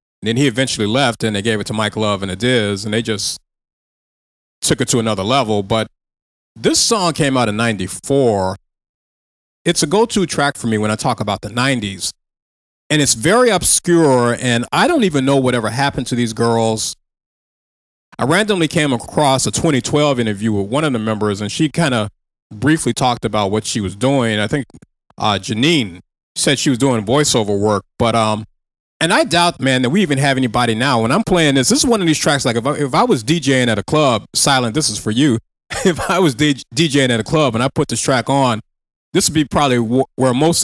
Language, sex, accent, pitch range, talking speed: English, male, American, 110-150 Hz, 215 wpm